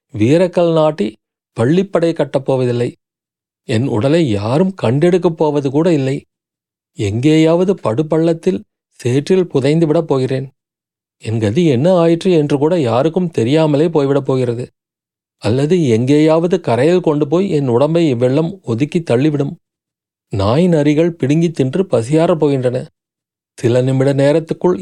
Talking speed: 110 wpm